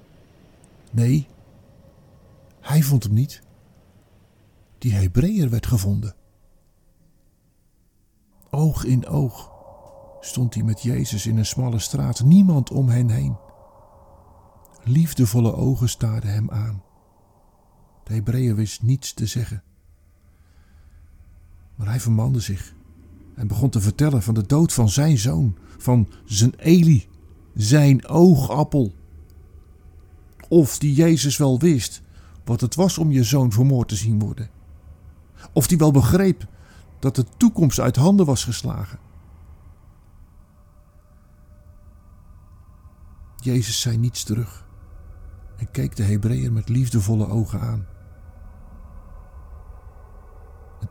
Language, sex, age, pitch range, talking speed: Dutch, male, 50-69, 85-125 Hz, 110 wpm